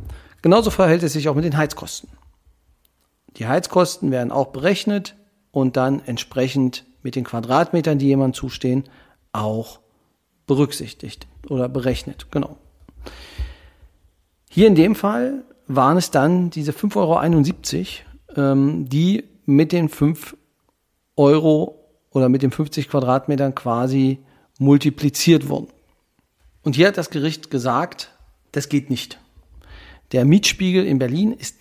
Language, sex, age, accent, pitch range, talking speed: German, male, 40-59, German, 125-165 Hz, 120 wpm